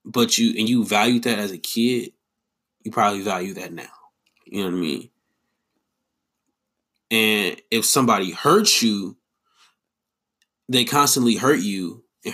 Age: 20-39